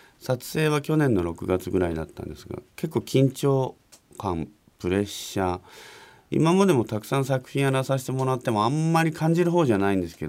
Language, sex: Japanese, male